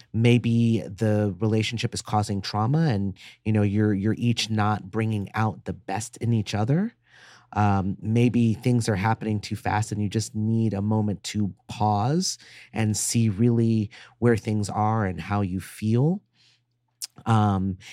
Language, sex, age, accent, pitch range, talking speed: English, male, 30-49, American, 105-125 Hz, 155 wpm